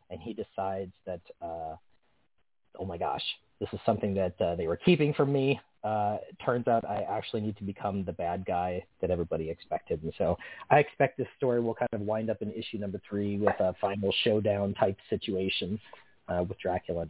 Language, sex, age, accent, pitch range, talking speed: English, male, 30-49, American, 110-150 Hz, 200 wpm